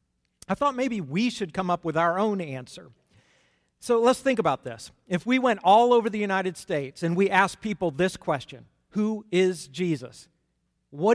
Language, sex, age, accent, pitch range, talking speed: English, male, 50-69, American, 145-195 Hz, 185 wpm